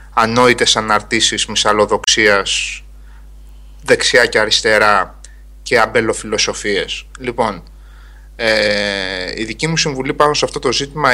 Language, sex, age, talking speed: Greek, male, 20-39, 100 wpm